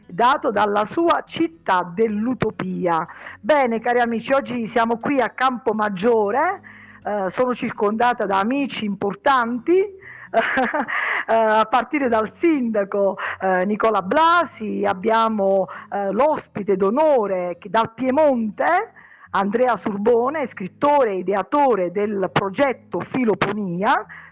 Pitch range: 190-250 Hz